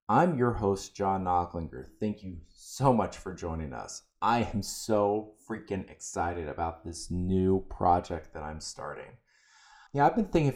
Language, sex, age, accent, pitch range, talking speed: English, male, 20-39, American, 90-120 Hz, 160 wpm